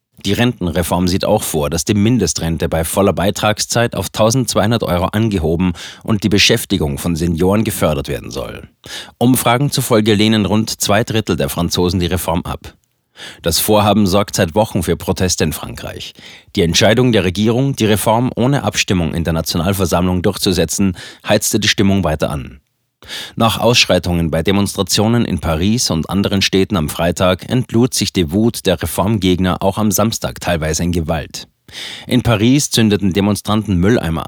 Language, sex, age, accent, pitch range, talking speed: German, male, 30-49, German, 90-110 Hz, 155 wpm